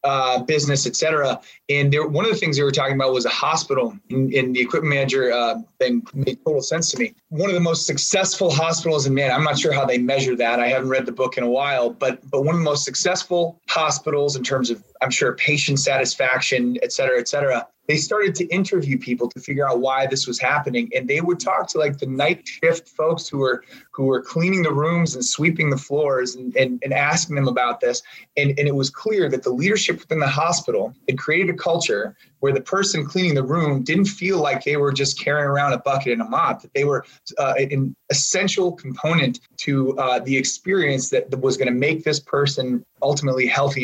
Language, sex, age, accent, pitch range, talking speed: English, male, 20-39, American, 130-170 Hz, 225 wpm